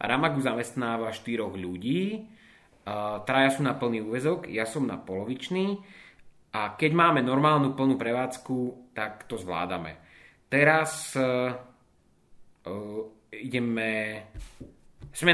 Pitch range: 120-145 Hz